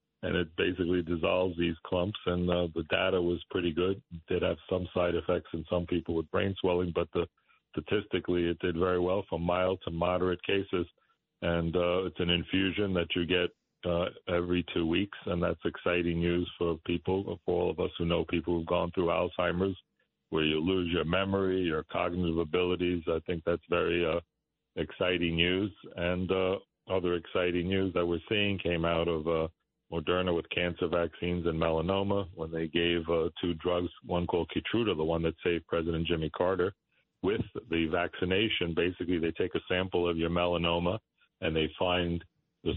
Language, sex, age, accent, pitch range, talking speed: English, male, 60-79, American, 85-90 Hz, 180 wpm